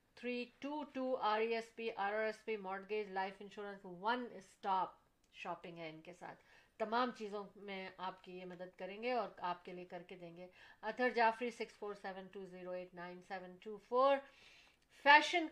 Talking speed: 140 wpm